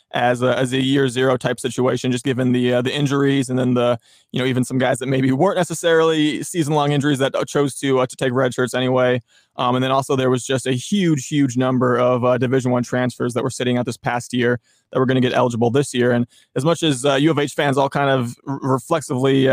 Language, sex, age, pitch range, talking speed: English, male, 20-39, 125-140 Hz, 250 wpm